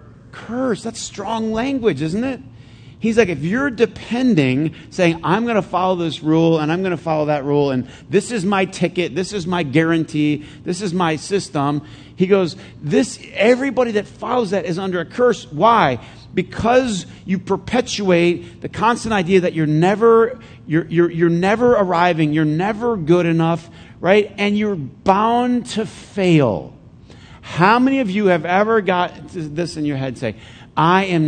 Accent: American